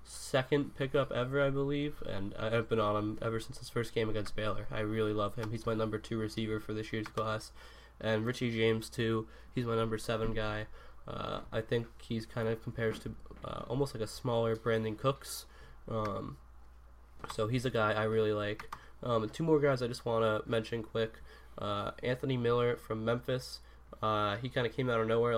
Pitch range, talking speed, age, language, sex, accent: 110-120 Hz, 200 wpm, 10-29, English, male, American